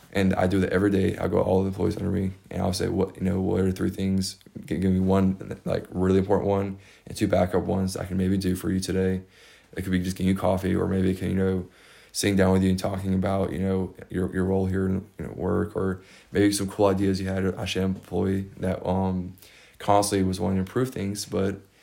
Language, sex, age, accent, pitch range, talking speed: English, male, 20-39, American, 95-100 Hz, 245 wpm